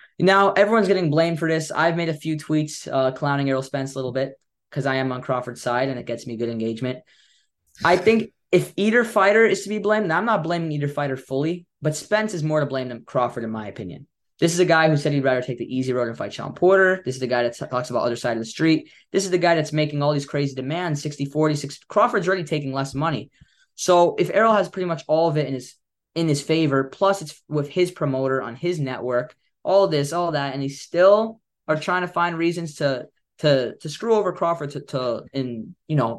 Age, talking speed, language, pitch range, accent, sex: 10-29, 240 wpm, English, 135-175 Hz, American, male